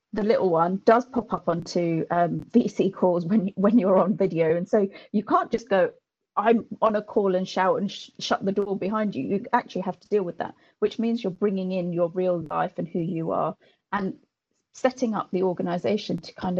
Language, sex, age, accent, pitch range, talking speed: English, female, 30-49, British, 185-230 Hz, 215 wpm